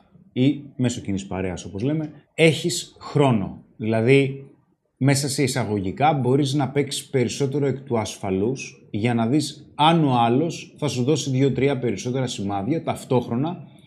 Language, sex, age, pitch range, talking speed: Greek, male, 30-49, 115-150 Hz, 140 wpm